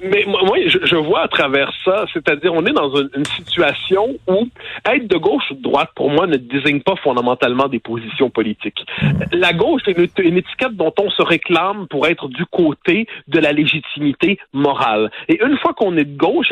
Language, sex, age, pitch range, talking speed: French, male, 40-59, 150-235 Hz, 195 wpm